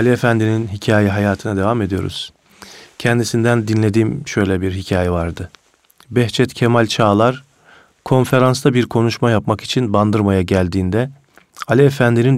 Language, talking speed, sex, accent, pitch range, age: Turkish, 115 wpm, male, native, 100-125 Hz, 40-59